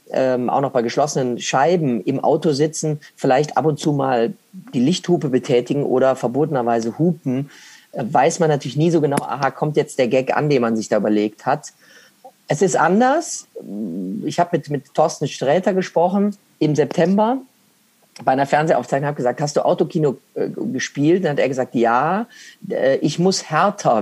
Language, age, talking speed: German, 30-49, 170 wpm